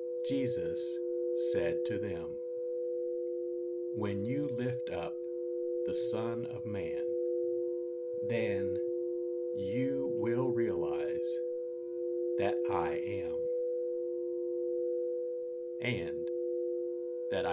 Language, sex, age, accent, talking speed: English, male, 50-69, American, 70 wpm